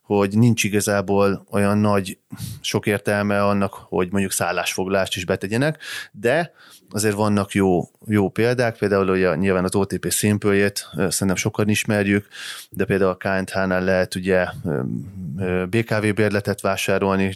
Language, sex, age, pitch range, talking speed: Hungarian, male, 20-39, 95-105 Hz, 130 wpm